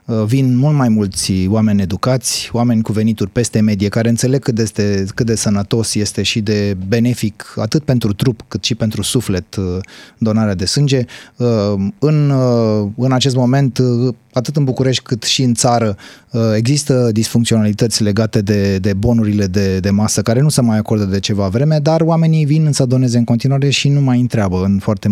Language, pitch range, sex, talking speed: Romanian, 105-130 Hz, male, 175 wpm